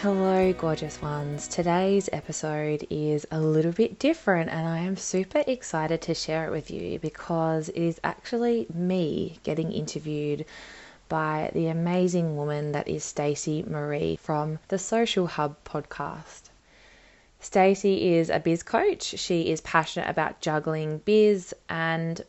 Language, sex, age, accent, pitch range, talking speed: English, female, 20-39, Australian, 150-185 Hz, 140 wpm